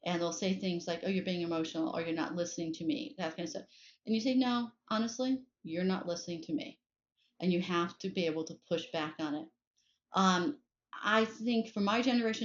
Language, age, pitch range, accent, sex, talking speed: English, 40-59, 175-225 Hz, American, female, 220 wpm